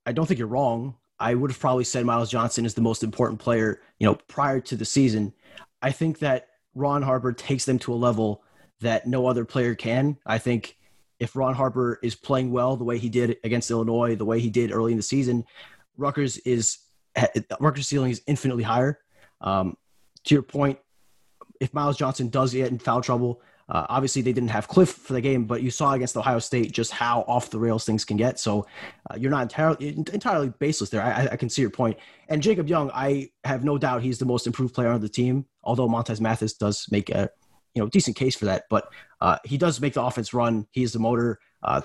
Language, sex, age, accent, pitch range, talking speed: English, male, 20-39, American, 115-135 Hz, 225 wpm